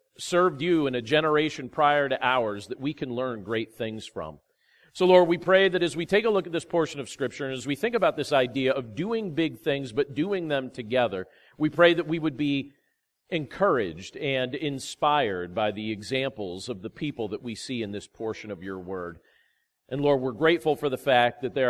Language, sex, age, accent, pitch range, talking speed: English, male, 40-59, American, 125-175 Hz, 215 wpm